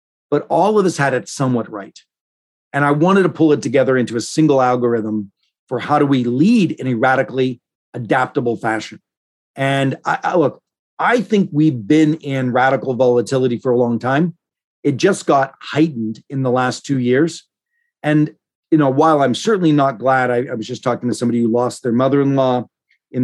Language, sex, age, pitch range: English, male, 40-59, 125-150 Hz